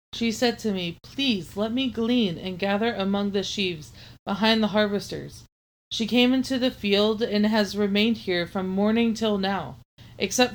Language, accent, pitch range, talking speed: English, American, 190-225 Hz, 170 wpm